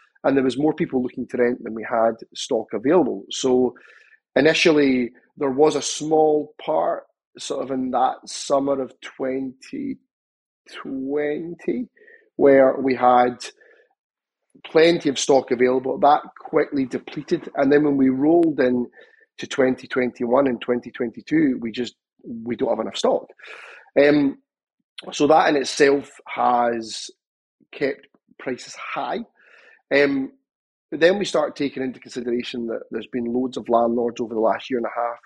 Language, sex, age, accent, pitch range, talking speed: English, male, 30-49, British, 120-150 Hz, 145 wpm